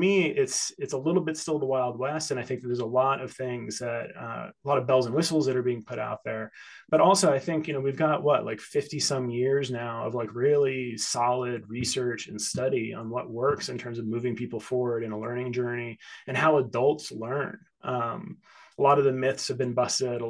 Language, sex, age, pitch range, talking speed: English, male, 20-39, 115-135 Hz, 240 wpm